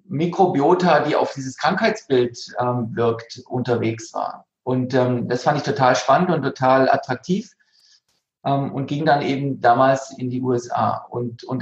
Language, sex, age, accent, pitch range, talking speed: German, male, 40-59, German, 130-165 Hz, 155 wpm